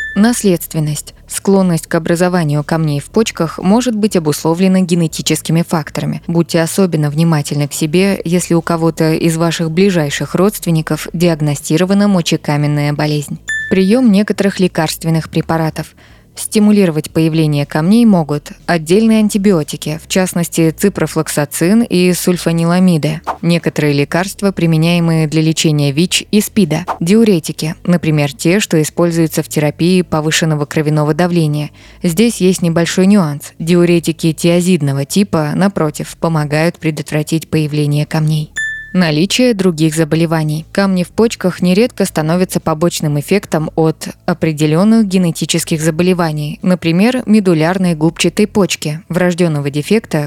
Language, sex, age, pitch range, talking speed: Russian, female, 20-39, 155-185 Hz, 110 wpm